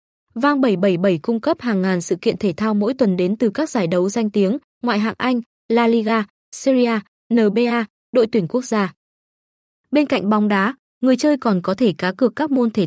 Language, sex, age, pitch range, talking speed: Vietnamese, female, 20-39, 200-250 Hz, 205 wpm